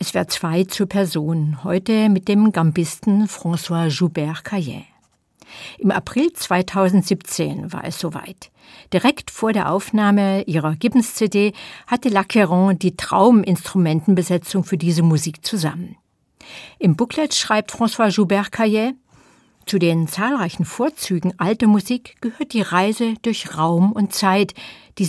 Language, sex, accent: German, female, German